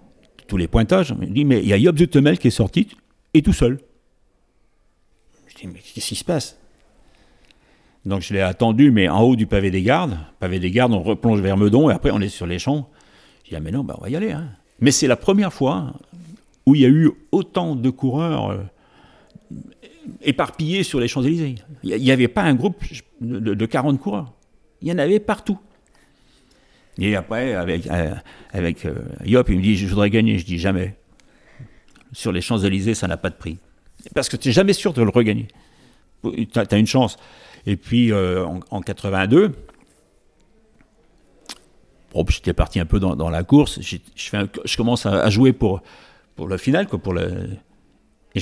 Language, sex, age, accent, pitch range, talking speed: French, male, 60-79, French, 95-140 Hz, 200 wpm